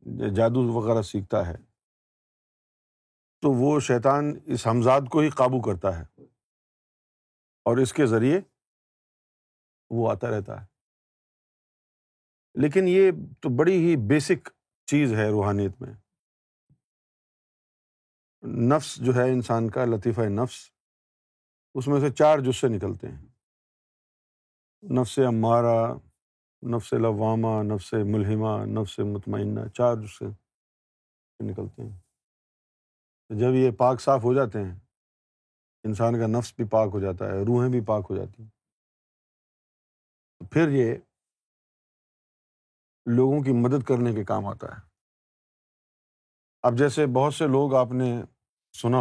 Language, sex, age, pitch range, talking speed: Urdu, male, 50-69, 110-130 Hz, 120 wpm